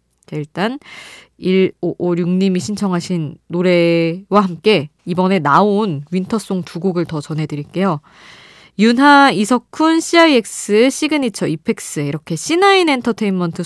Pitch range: 165-230 Hz